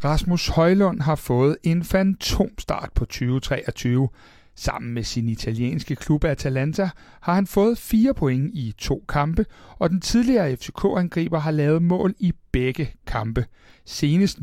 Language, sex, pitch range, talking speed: Danish, male, 135-180 Hz, 140 wpm